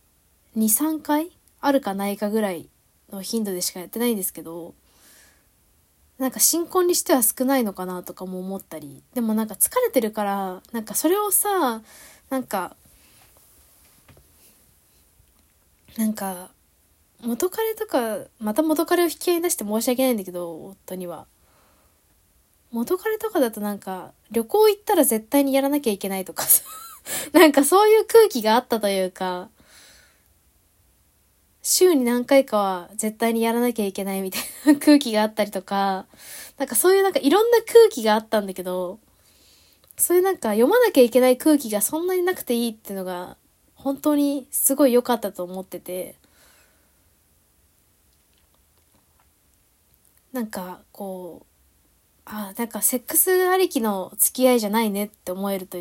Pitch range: 165-275 Hz